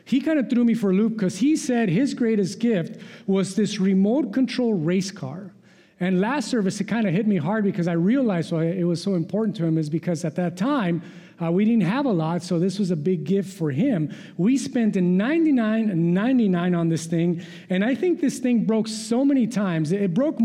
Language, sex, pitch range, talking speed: English, male, 180-235 Hz, 225 wpm